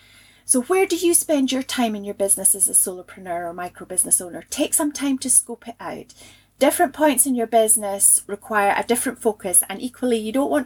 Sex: female